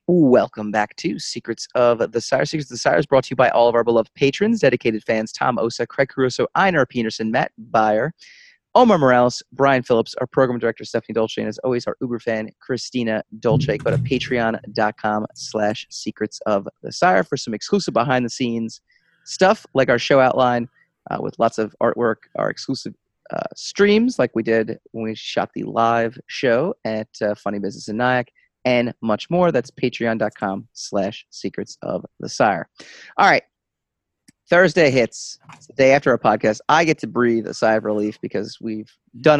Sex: male